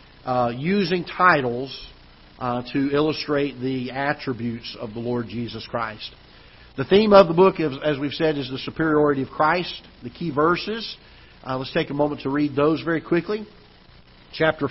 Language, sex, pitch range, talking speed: English, male, 130-165 Hz, 165 wpm